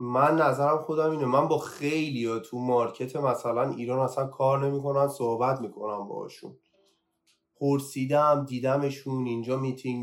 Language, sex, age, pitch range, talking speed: Persian, male, 20-39, 115-160 Hz, 125 wpm